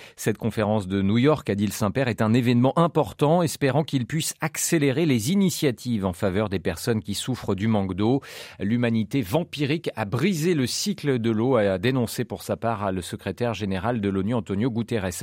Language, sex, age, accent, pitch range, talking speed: French, male, 40-59, French, 105-140 Hz, 195 wpm